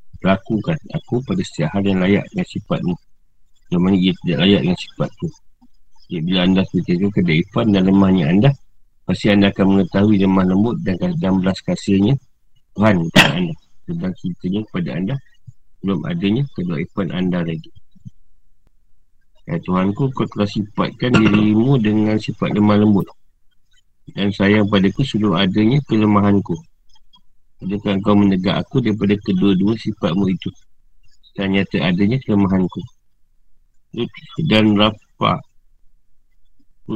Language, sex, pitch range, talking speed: Malay, male, 95-115 Hz, 125 wpm